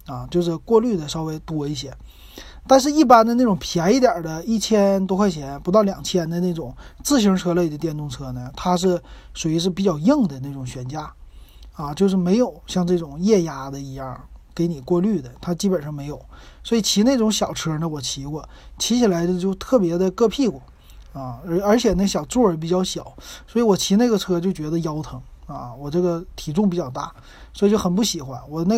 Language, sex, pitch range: Chinese, male, 145-200 Hz